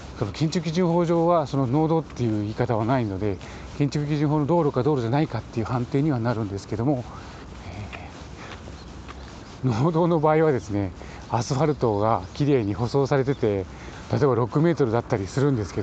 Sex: male